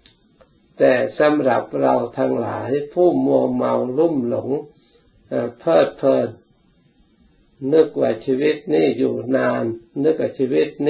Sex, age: male, 60-79